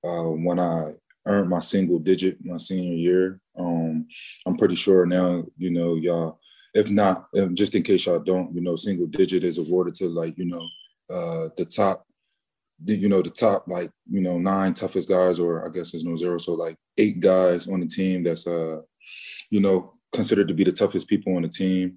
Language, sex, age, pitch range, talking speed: English, male, 20-39, 85-95 Hz, 200 wpm